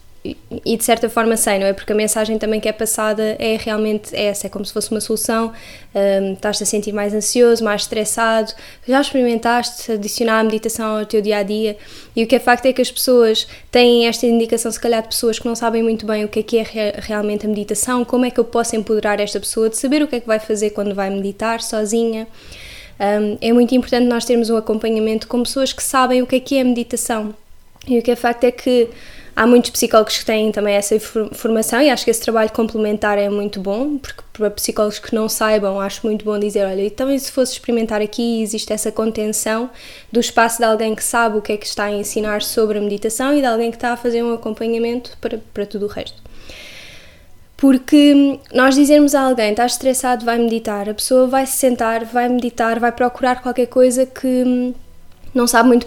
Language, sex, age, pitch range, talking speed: Portuguese, female, 10-29, 215-245 Hz, 220 wpm